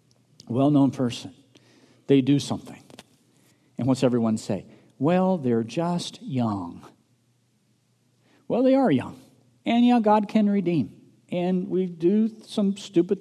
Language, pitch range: English, 125-185 Hz